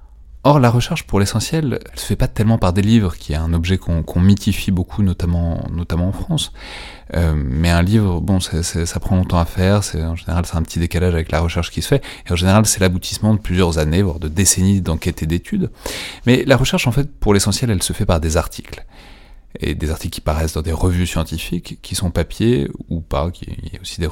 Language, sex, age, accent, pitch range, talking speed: French, male, 30-49, French, 85-105 Hz, 240 wpm